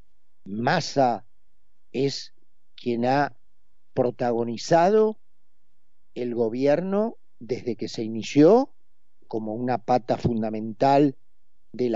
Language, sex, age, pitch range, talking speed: Spanish, male, 50-69, 110-140 Hz, 80 wpm